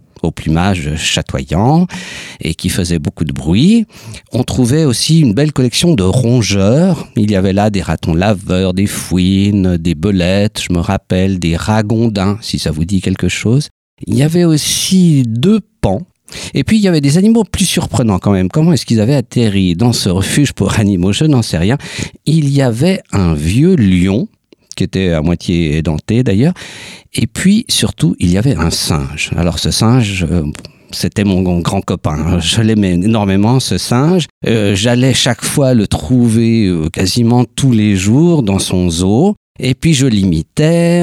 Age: 50-69